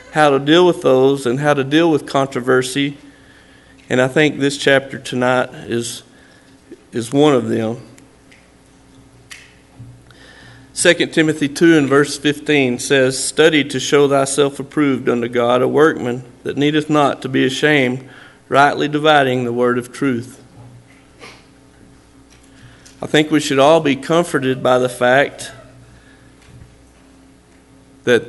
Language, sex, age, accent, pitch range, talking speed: English, male, 50-69, American, 130-150 Hz, 130 wpm